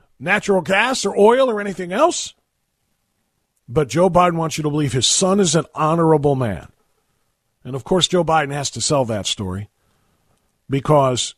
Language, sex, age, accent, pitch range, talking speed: English, male, 40-59, American, 130-180 Hz, 165 wpm